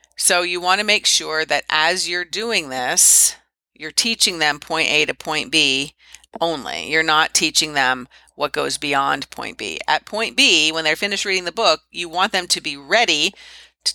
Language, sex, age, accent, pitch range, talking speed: English, female, 40-59, American, 150-195 Hz, 195 wpm